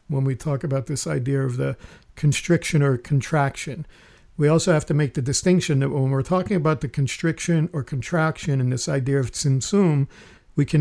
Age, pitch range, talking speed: 50-69, 135-160 Hz, 190 wpm